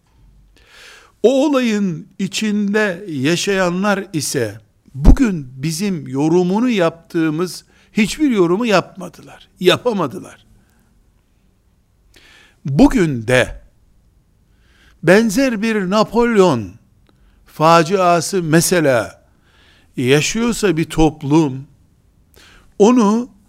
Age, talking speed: 60-79, 60 wpm